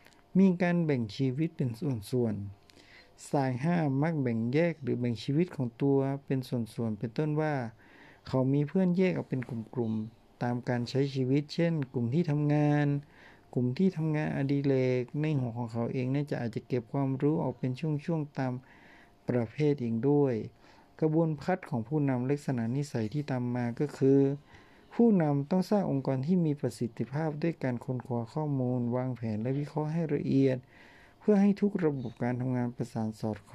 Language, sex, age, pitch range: Thai, male, 60-79, 120-150 Hz